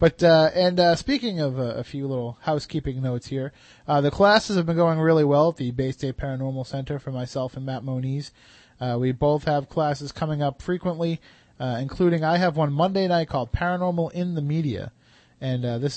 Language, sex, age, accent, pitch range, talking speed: English, male, 30-49, American, 130-160 Hz, 205 wpm